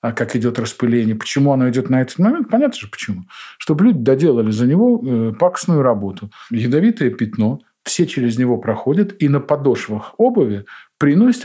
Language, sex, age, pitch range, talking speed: Russian, male, 50-69, 120-185 Hz, 155 wpm